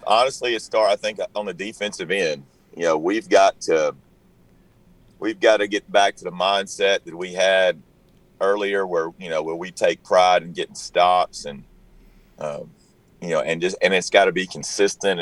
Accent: American